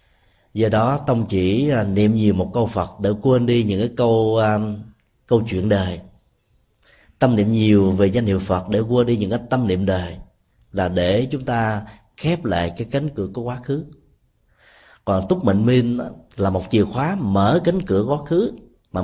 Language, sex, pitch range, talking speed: Vietnamese, male, 95-125 Hz, 190 wpm